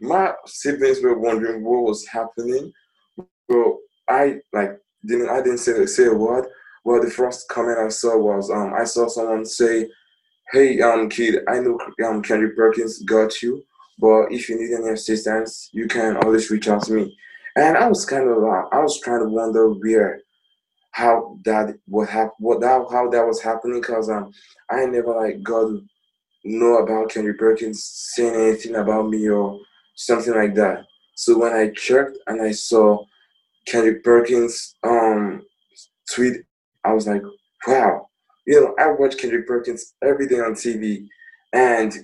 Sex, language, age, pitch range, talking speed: male, English, 20-39, 110-125 Hz, 170 wpm